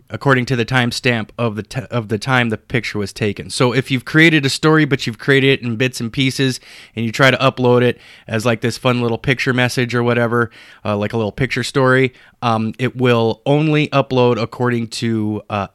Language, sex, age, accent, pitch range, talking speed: English, male, 30-49, American, 115-140 Hz, 215 wpm